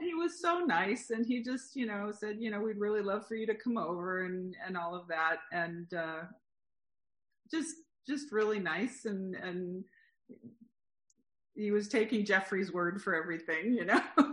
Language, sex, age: English, female, 40-59